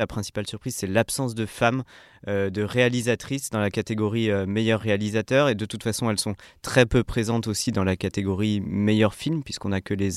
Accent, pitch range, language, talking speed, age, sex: French, 105-125 Hz, French, 205 wpm, 20-39, male